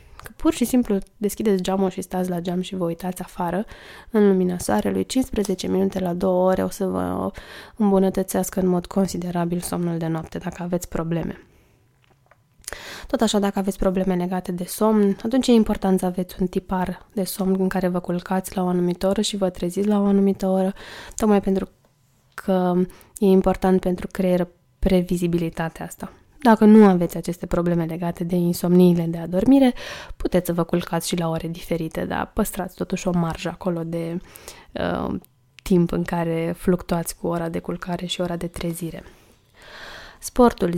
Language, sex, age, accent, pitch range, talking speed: Romanian, female, 20-39, native, 175-195 Hz, 170 wpm